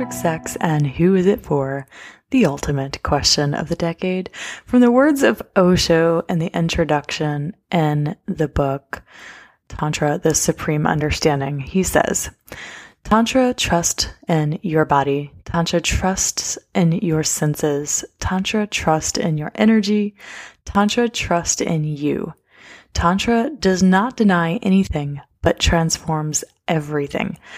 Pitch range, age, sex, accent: 155-195 Hz, 20-39, female, American